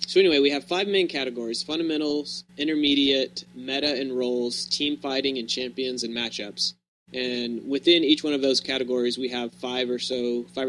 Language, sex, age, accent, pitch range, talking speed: English, male, 20-39, American, 120-145 Hz, 175 wpm